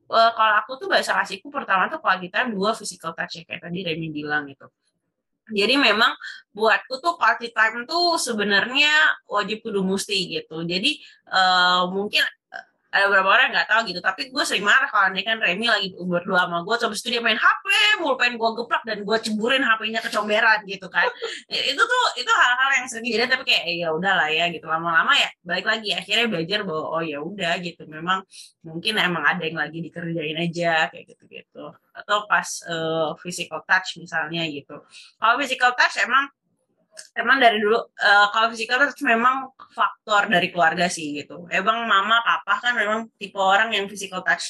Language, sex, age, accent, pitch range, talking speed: Indonesian, female, 20-39, native, 175-230 Hz, 185 wpm